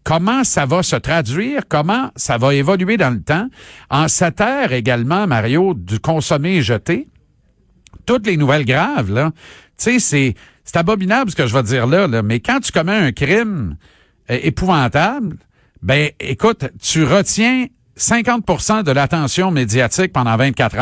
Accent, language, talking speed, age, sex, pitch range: Canadian, French, 160 wpm, 50-69, male, 125-190 Hz